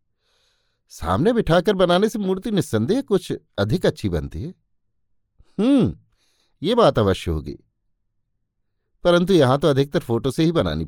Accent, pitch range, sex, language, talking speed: native, 105-175 Hz, male, Hindi, 130 wpm